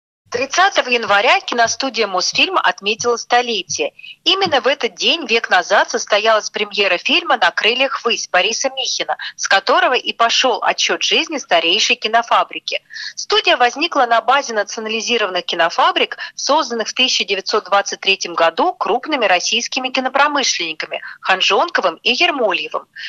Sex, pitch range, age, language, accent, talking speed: female, 205-280 Hz, 40-59, Russian, native, 115 wpm